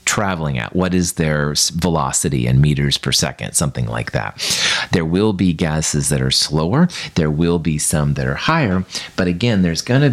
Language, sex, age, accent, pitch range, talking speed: English, male, 40-59, American, 75-105 Hz, 185 wpm